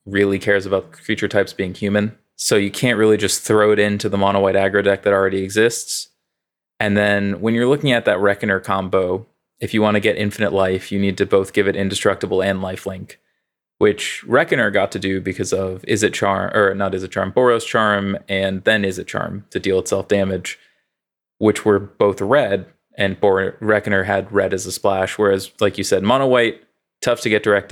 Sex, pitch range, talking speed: male, 100-115 Hz, 205 wpm